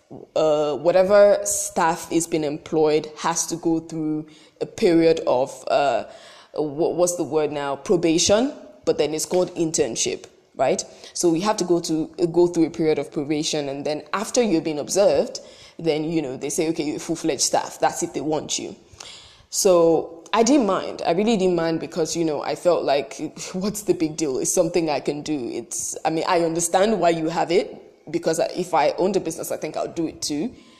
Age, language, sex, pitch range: 20-39, English, female, 155-185 Hz